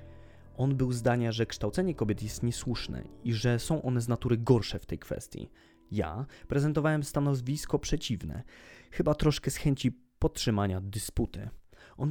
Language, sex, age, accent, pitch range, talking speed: Polish, male, 20-39, native, 100-130 Hz, 145 wpm